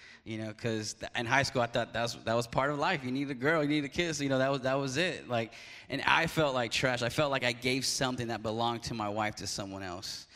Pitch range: 115-140 Hz